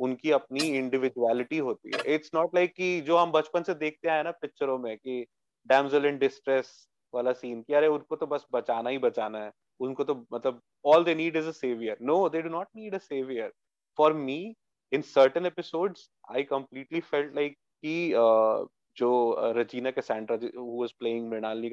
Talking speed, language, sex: 125 wpm, Hindi, male